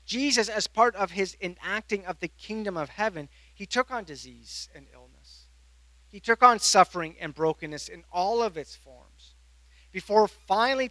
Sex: male